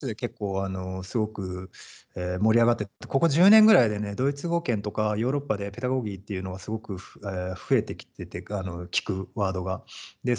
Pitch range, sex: 100-165 Hz, male